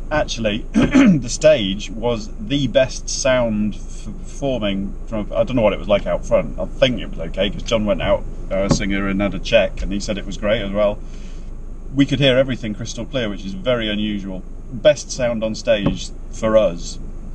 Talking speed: 205 wpm